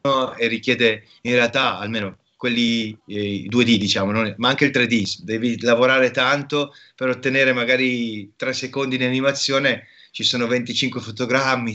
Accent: native